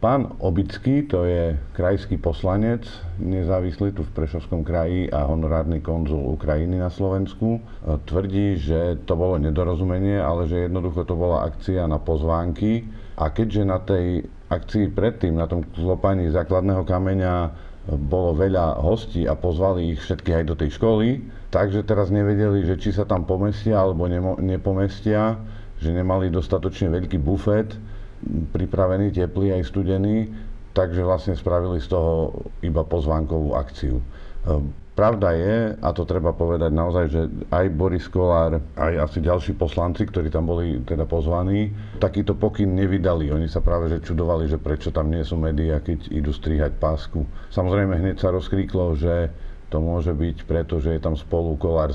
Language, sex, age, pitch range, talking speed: Slovak, male, 50-69, 80-100 Hz, 150 wpm